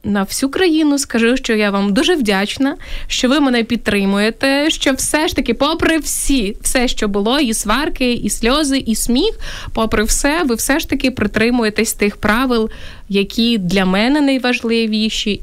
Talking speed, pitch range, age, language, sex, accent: 160 wpm, 215-280 Hz, 20-39, Ukrainian, female, native